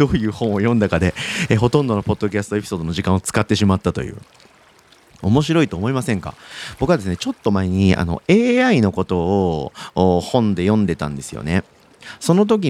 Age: 40-59